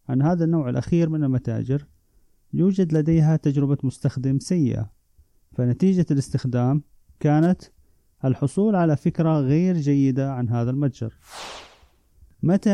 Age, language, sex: 30-49, Arabic, male